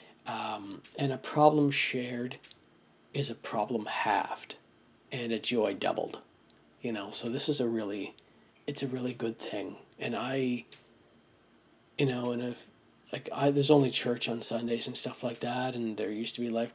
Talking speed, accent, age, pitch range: 170 wpm, American, 40-59, 115-130 Hz